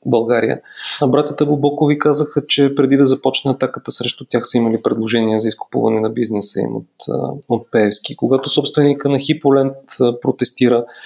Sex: male